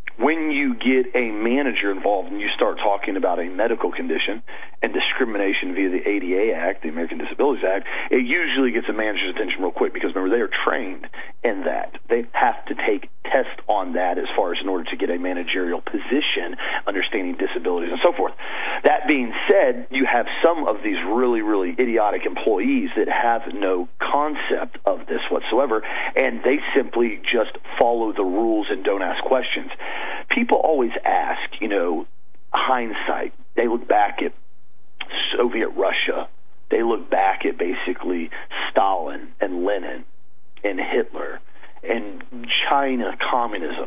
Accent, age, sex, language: American, 40-59, male, English